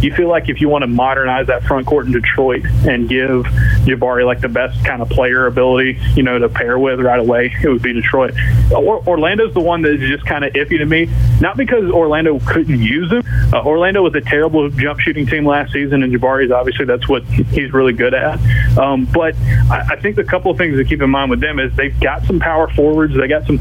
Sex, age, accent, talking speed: male, 20-39, American, 240 wpm